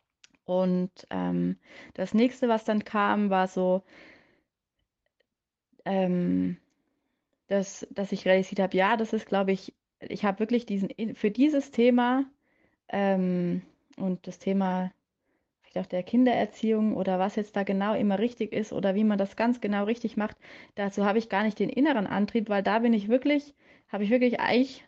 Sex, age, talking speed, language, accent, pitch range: female, 30-49, 165 wpm, German, German, 190-245 Hz